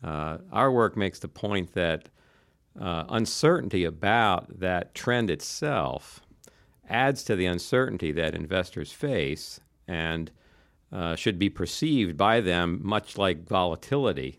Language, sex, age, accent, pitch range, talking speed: English, male, 50-69, American, 80-100 Hz, 125 wpm